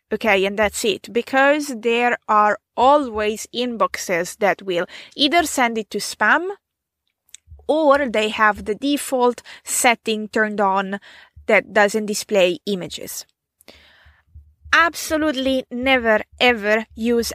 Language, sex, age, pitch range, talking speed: English, female, 20-39, 200-255 Hz, 110 wpm